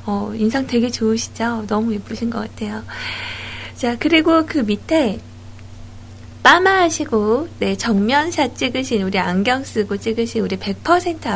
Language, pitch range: Korean, 190-270 Hz